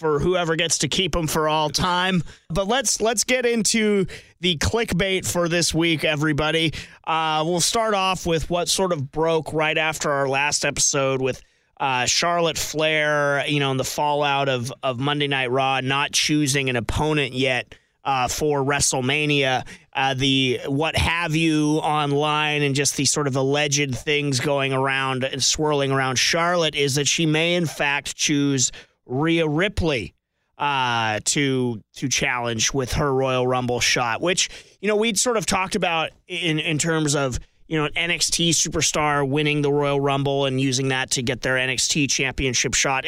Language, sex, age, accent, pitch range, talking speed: English, male, 30-49, American, 135-165 Hz, 170 wpm